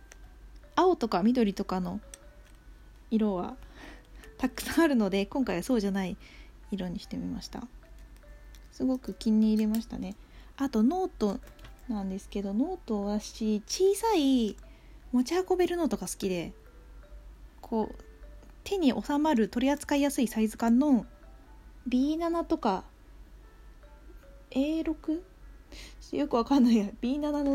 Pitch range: 200-270 Hz